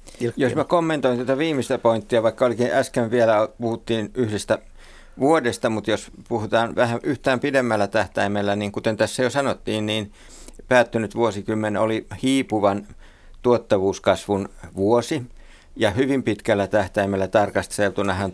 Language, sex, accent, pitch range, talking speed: Finnish, male, native, 90-110 Hz, 120 wpm